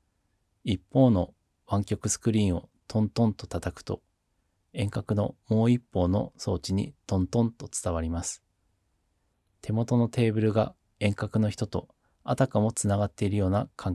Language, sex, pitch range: Japanese, male, 90-105 Hz